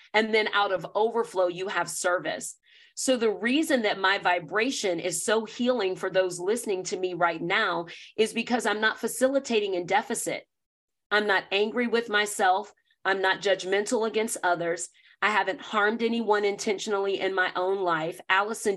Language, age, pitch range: English, 40-59, 185-240 Hz